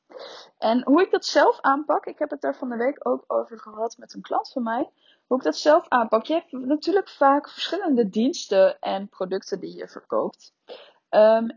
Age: 20-39